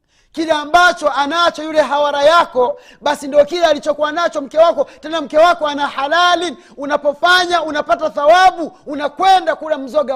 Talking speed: 140 wpm